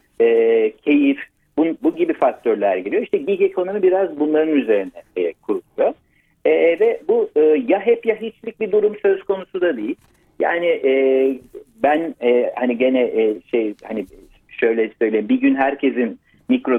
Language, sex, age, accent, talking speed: Turkish, male, 60-79, native, 155 wpm